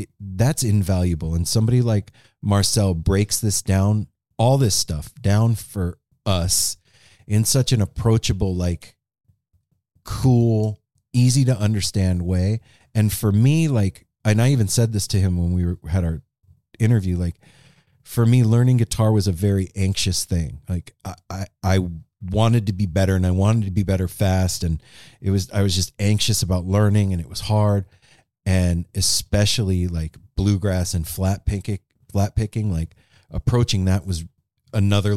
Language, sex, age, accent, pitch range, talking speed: English, male, 30-49, American, 95-115 Hz, 155 wpm